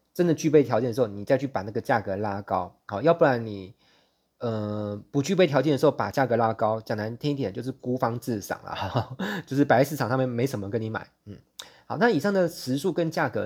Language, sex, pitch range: Chinese, male, 110-145 Hz